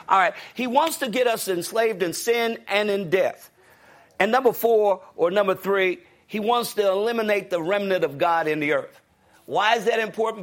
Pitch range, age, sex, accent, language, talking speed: 175-235 Hz, 50-69, male, American, English, 195 wpm